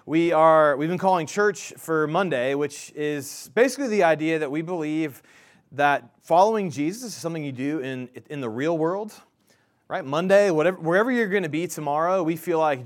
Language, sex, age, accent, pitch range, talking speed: English, male, 30-49, American, 140-180 Hz, 185 wpm